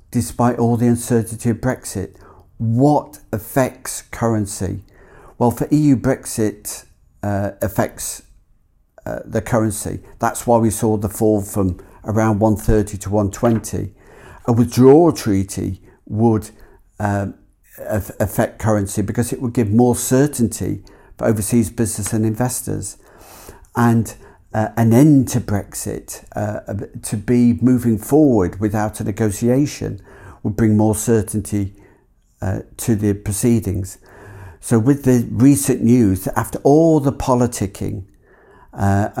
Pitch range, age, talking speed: 100-120 Hz, 50-69, 120 wpm